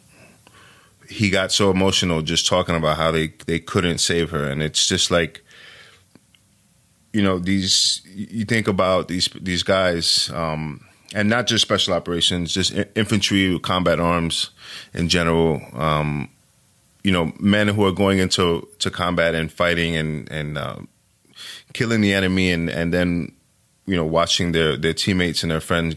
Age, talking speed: 20-39, 155 wpm